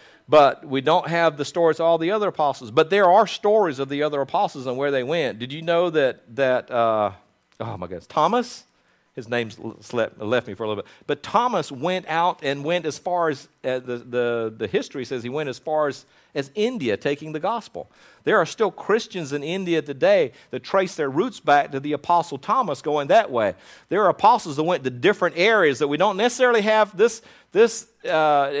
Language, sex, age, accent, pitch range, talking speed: English, male, 50-69, American, 135-195 Hz, 215 wpm